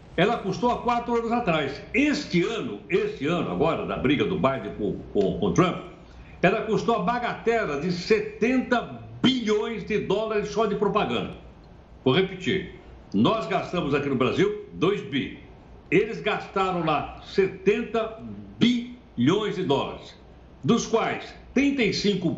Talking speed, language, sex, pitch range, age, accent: 130 wpm, Portuguese, male, 175-225 Hz, 60-79, Brazilian